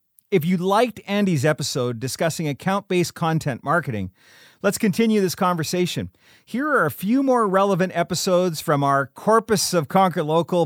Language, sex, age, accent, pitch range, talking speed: English, male, 40-59, American, 150-200 Hz, 145 wpm